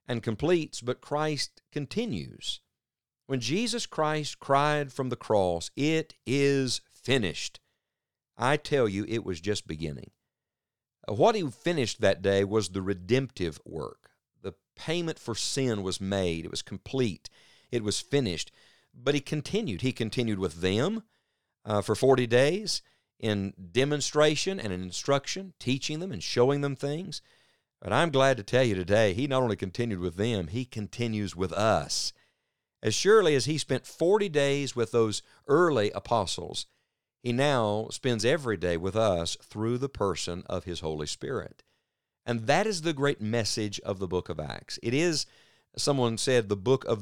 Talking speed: 160 wpm